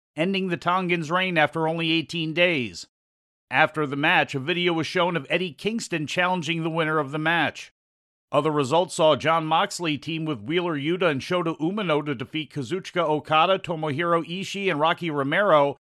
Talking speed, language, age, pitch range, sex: 170 wpm, English, 50-69, 145-170 Hz, male